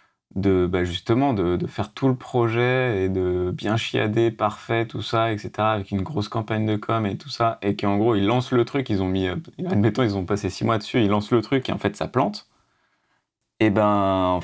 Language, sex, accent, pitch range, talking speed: French, male, French, 95-120 Hz, 230 wpm